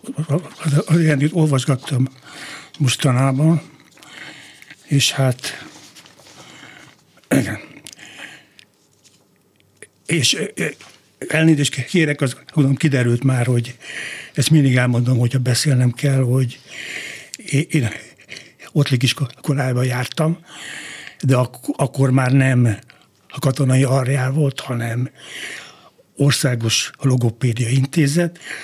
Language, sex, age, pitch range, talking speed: Hungarian, male, 60-79, 125-140 Hz, 70 wpm